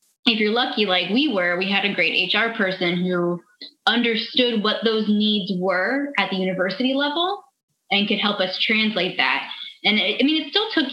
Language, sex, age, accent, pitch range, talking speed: English, female, 10-29, American, 185-230 Hz, 185 wpm